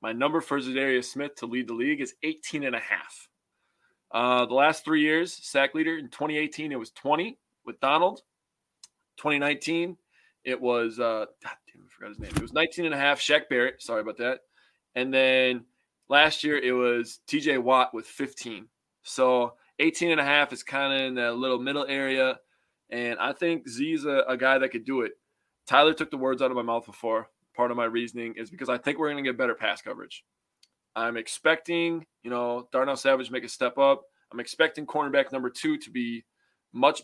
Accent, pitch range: American, 125-150 Hz